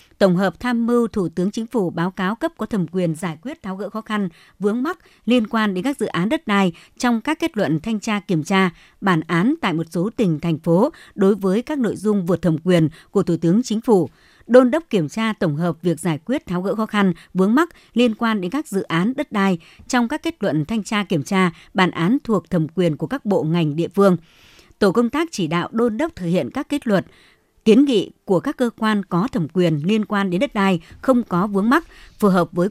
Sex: male